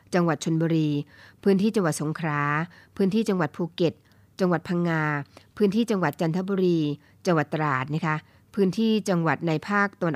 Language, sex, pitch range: Thai, female, 150-190 Hz